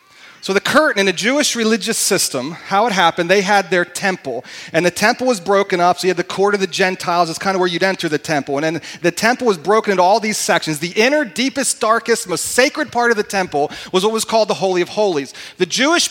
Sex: male